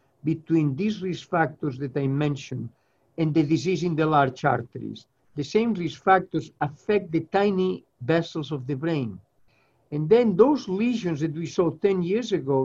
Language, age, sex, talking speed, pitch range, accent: English, 60-79, male, 165 wpm, 145-185 Hz, Spanish